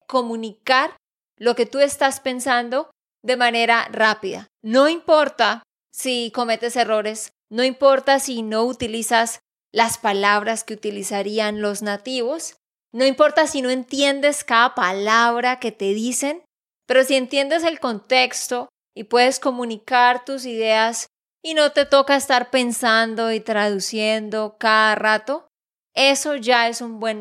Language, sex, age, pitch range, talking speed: Spanish, female, 20-39, 220-270 Hz, 130 wpm